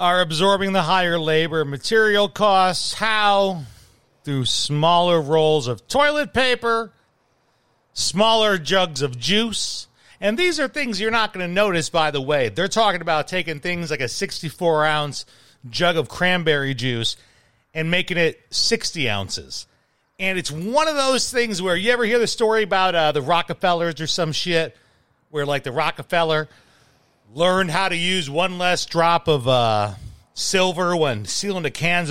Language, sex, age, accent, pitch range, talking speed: English, male, 40-59, American, 145-200 Hz, 155 wpm